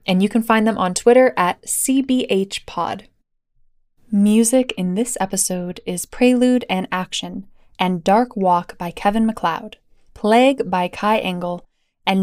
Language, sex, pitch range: English, female, 185-240 Hz